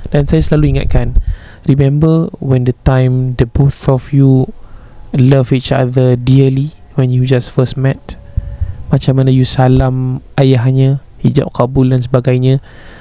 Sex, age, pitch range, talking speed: male, 20-39, 125-145 Hz, 140 wpm